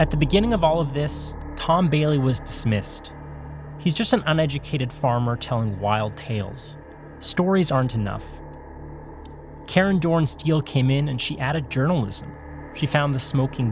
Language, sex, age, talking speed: English, male, 30-49, 155 wpm